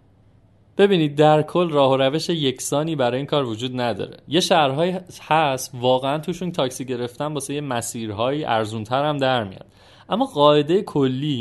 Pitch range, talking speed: 120-160 Hz, 140 wpm